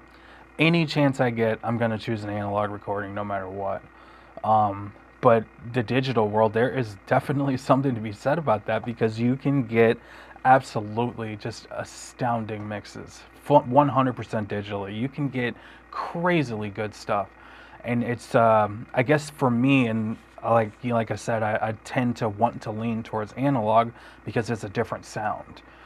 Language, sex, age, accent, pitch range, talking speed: English, male, 20-39, American, 110-125 Hz, 165 wpm